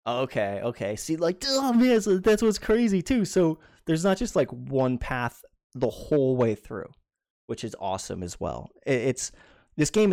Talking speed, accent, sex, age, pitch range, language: 180 wpm, American, male, 20-39, 105-150 Hz, English